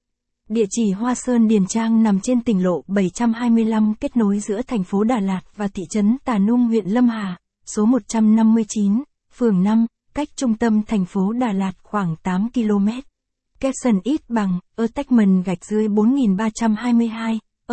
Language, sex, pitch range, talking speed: Vietnamese, female, 200-235 Hz, 170 wpm